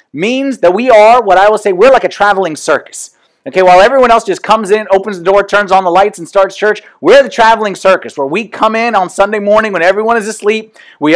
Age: 30-49